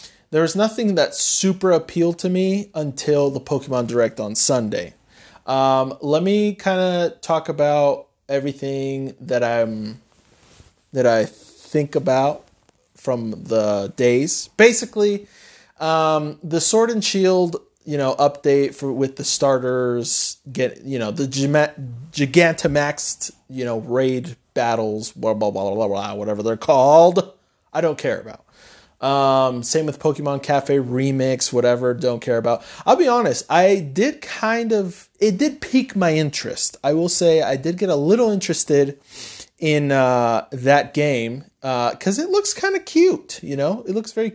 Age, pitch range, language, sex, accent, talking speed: 30-49, 130-190 Hz, English, male, American, 155 wpm